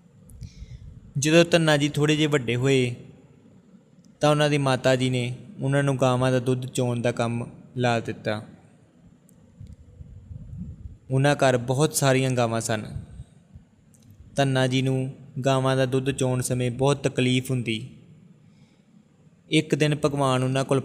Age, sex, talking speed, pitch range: 20-39, male, 130 wpm, 125-145 Hz